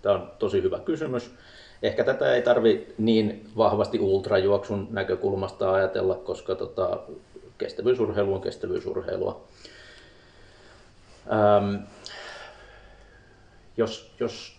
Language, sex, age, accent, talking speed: Finnish, male, 30-49, native, 80 wpm